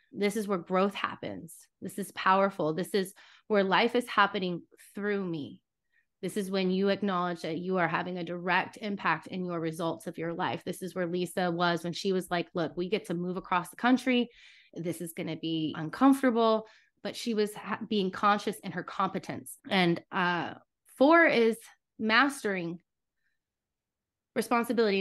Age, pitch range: 20-39, 185-225 Hz